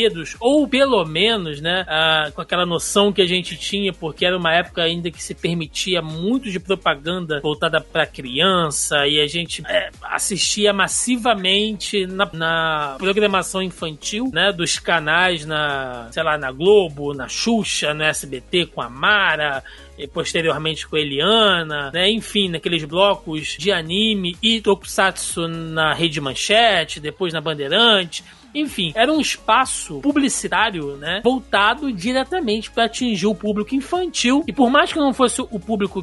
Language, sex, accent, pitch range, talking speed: Portuguese, male, Brazilian, 165-225 Hz, 150 wpm